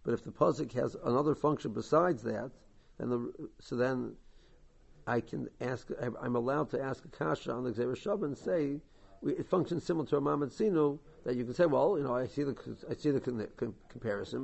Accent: American